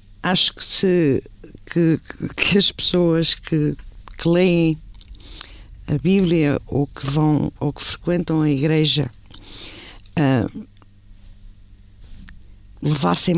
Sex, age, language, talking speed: female, 50-69, Portuguese, 100 wpm